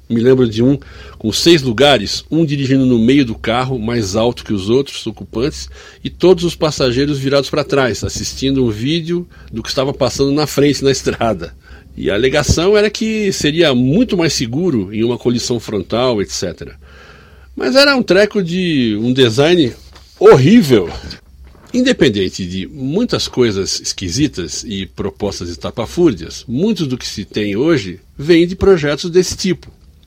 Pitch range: 110-165 Hz